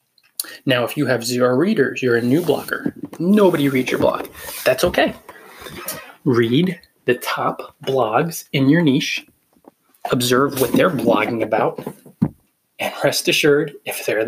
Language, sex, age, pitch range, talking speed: English, male, 20-39, 120-145 Hz, 140 wpm